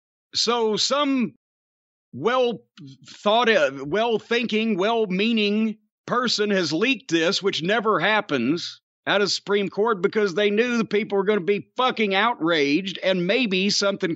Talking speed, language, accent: 140 wpm, English, American